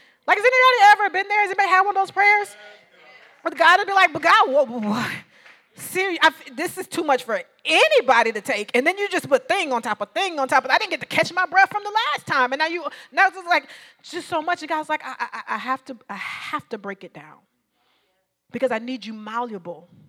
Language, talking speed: English, 255 wpm